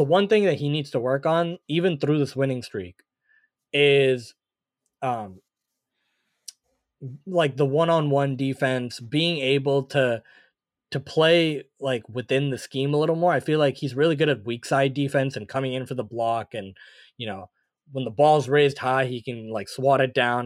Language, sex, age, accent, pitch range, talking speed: English, male, 20-39, American, 125-145 Hz, 180 wpm